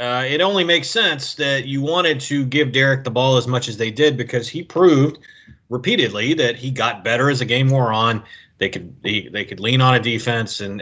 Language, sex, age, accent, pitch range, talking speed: English, male, 30-49, American, 120-155 Hz, 225 wpm